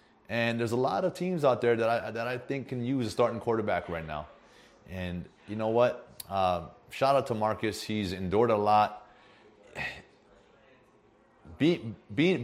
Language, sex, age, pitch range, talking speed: English, male, 30-49, 90-125 Hz, 165 wpm